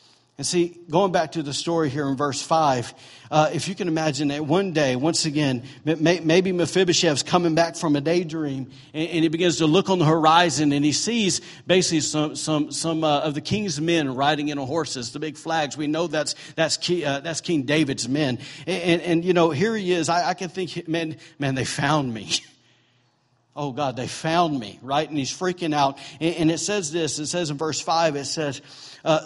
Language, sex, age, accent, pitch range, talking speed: English, male, 50-69, American, 140-170 Hz, 215 wpm